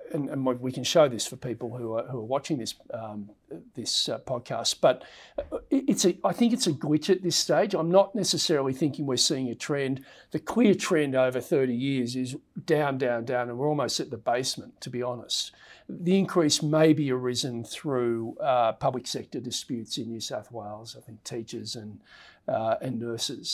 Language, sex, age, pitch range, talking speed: English, male, 50-69, 115-155 Hz, 195 wpm